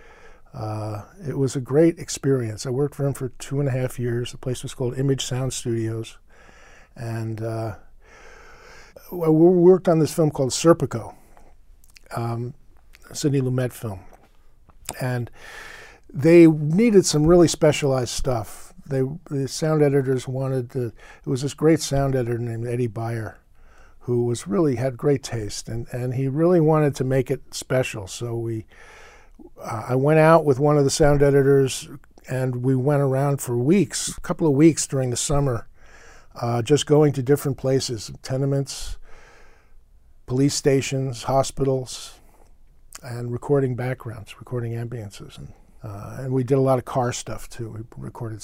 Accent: American